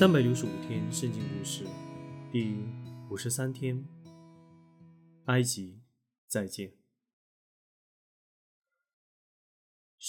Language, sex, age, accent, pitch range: Chinese, male, 20-39, native, 105-135 Hz